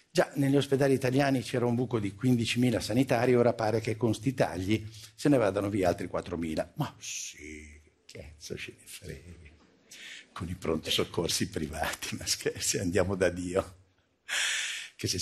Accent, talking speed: native, 160 wpm